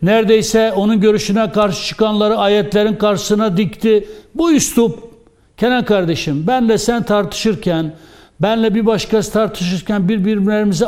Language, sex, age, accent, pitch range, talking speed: Turkish, male, 60-79, native, 175-215 Hz, 110 wpm